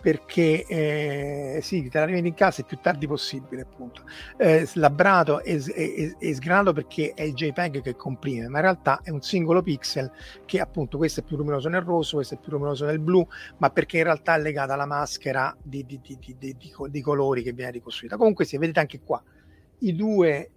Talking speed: 205 wpm